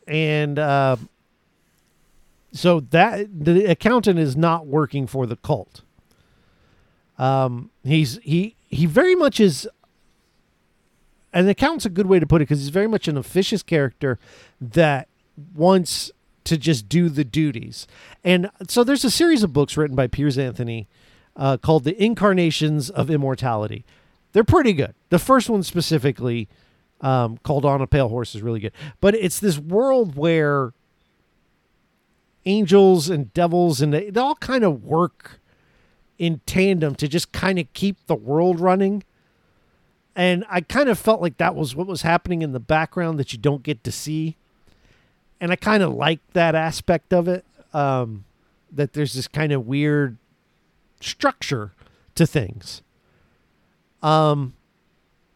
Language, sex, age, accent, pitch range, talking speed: English, male, 50-69, American, 135-180 Hz, 150 wpm